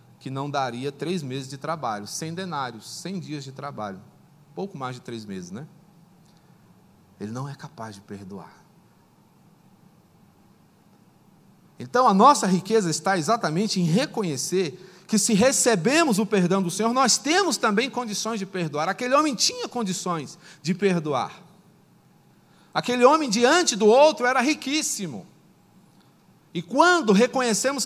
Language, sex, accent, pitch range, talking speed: Portuguese, male, Brazilian, 165-220 Hz, 135 wpm